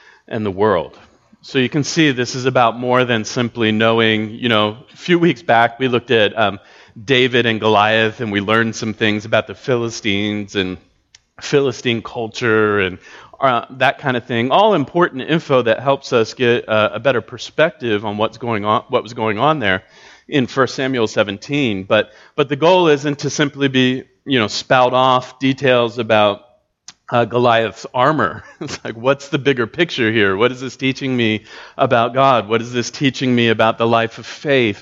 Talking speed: 190 wpm